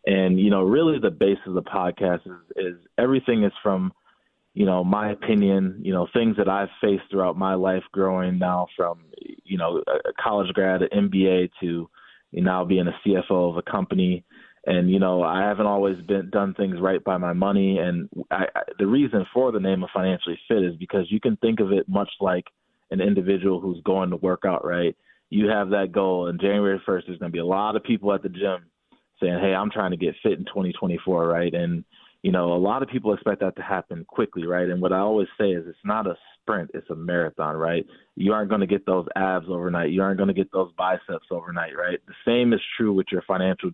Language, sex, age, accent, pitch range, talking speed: English, male, 20-39, American, 90-100 Hz, 220 wpm